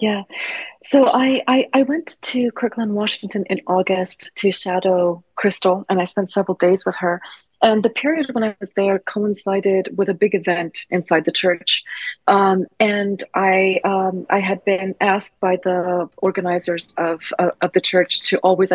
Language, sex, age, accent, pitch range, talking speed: English, female, 30-49, Canadian, 170-195 Hz, 175 wpm